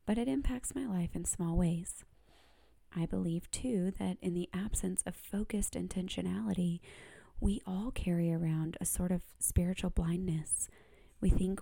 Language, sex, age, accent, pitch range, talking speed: English, female, 30-49, American, 170-195 Hz, 150 wpm